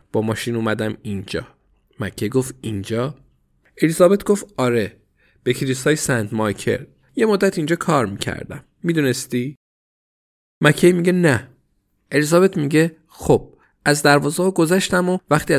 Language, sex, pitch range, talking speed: Persian, male, 105-145 Hz, 125 wpm